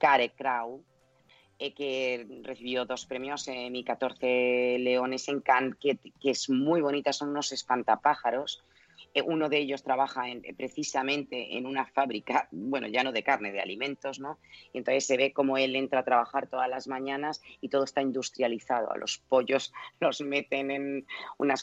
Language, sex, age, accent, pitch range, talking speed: Spanish, female, 30-49, Spanish, 120-140 Hz, 165 wpm